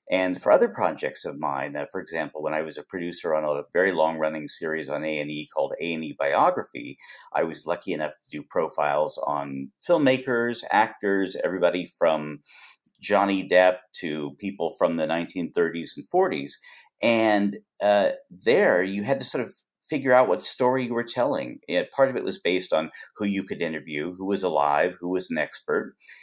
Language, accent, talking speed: English, American, 175 wpm